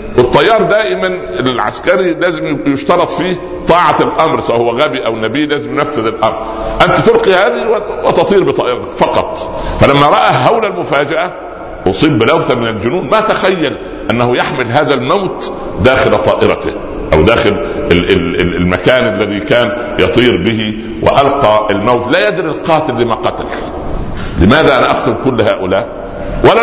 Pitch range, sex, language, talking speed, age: 115-160 Hz, male, Arabic, 130 wpm, 60-79